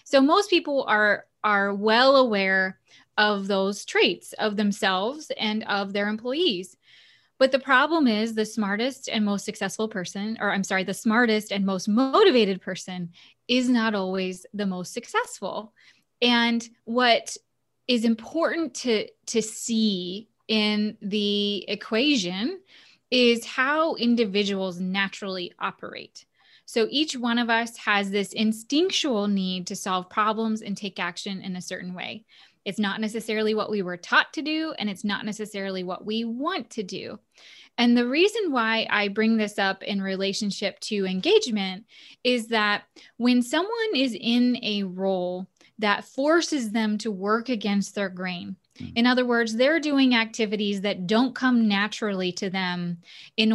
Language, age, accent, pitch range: English, 20-39, American, 195-245 Hz